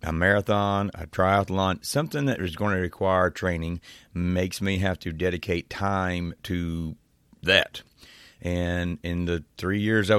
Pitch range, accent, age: 85-105 Hz, American, 30-49